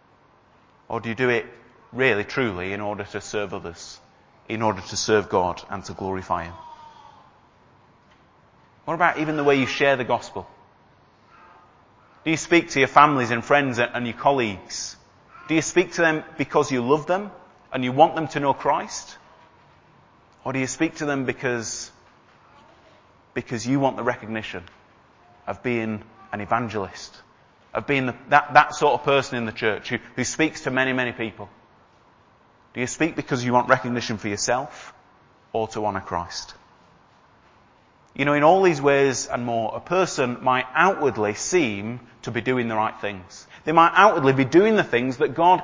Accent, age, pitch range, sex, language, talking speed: British, 30-49, 110-145 Hz, male, English, 170 wpm